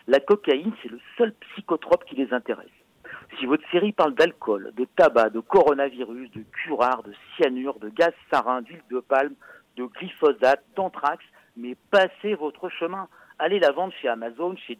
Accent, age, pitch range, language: French, 50-69, 135-220 Hz, French